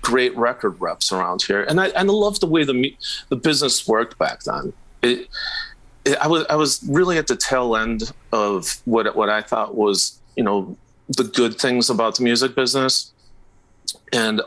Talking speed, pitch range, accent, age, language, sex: 185 wpm, 110-160 Hz, American, 30-49, English, male